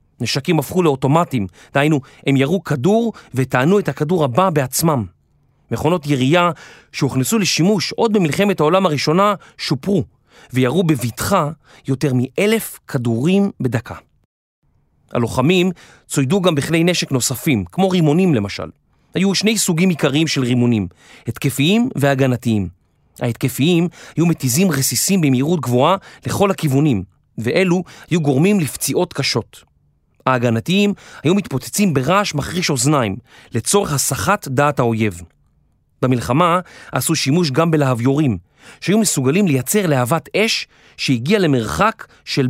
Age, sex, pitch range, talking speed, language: 30-49, male, 125-180 Hz, 115 wpm, Hebrew